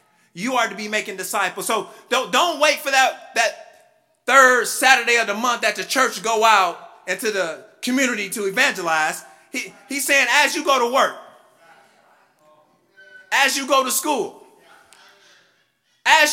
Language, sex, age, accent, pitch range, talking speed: English, male, 30-49, American, 190-280 Hz, 155 wpm